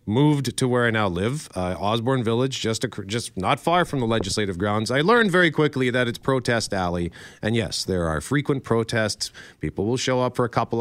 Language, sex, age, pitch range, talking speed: English, male, 40-59, 110-145 Hz, 220 wpm